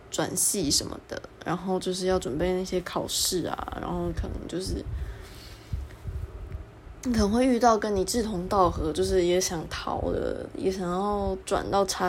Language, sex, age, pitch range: Chinese, female, 20-39, 170-205 Hz